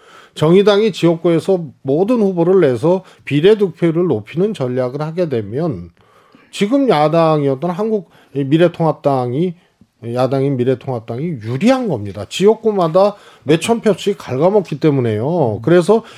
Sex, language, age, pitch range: male, Korean, 40-59, 145-210 Hz